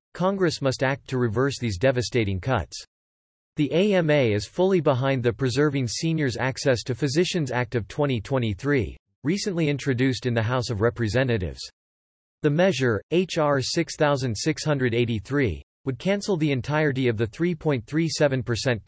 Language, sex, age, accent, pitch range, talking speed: English, male, 40-59, American, 115-150 Hz, 125 wpm